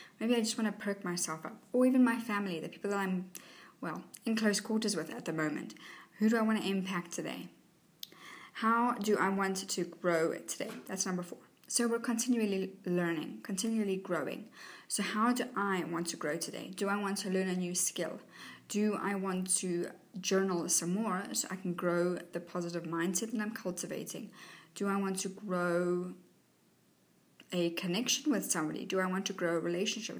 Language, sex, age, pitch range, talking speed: English, female, 20-39, 175-215 Hz, 190 wpm